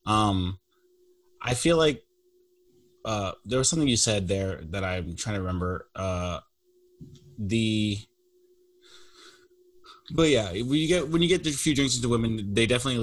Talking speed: 150 wpm